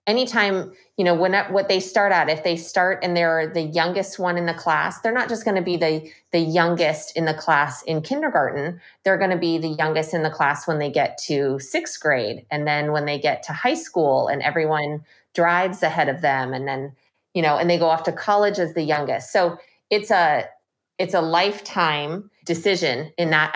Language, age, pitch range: English, 30-49, 155-190 Hz